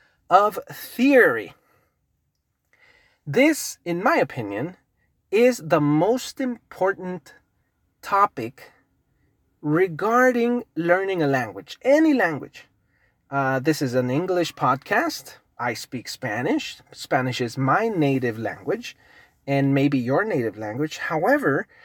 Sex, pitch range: male, 140-210 Hz